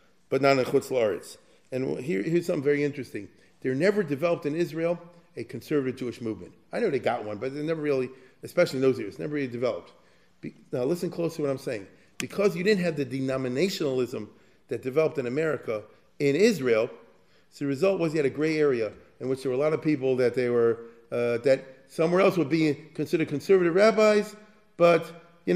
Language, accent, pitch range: English, American, 130-175 Hz